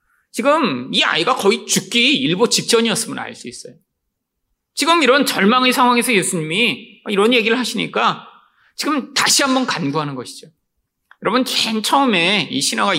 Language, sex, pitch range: Korean, male, 145-245 Hz